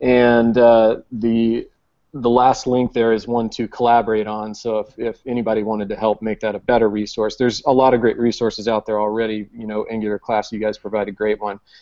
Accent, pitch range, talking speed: American, 110-125 Hz, 220 wpm